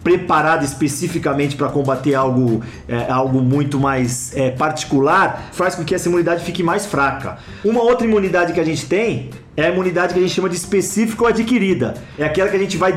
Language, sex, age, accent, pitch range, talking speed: Portuguese, male, 40-59, Brazilian, 150-205 Hz, 190 wpm